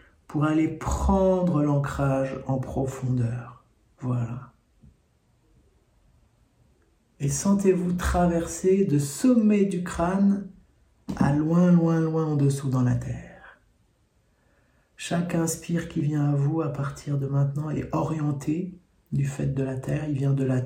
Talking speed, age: 130 wpm, 50-69